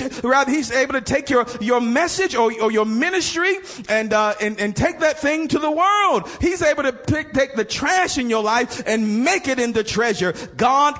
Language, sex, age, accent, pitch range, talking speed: English, male, 40-59, American, 240-290 Hz, 205 wpm